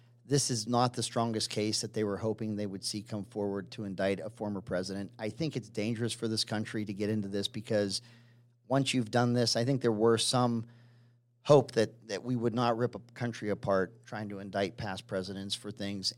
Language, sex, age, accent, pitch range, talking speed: English, male, 40-59, American, 100-120 Hz, 215 wpm